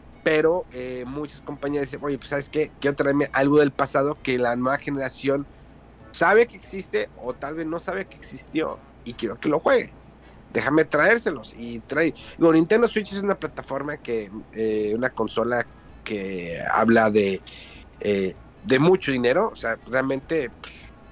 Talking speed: 160 wpm